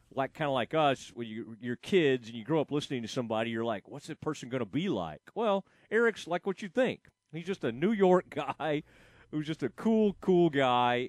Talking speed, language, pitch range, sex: 235 wpm, English, 120-175 Hz, male